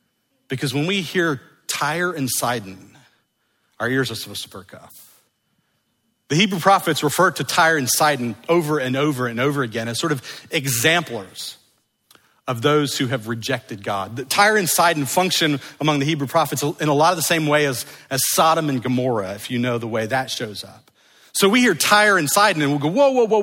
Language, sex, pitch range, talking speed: English, male, 135-185 Hz, 200 wpm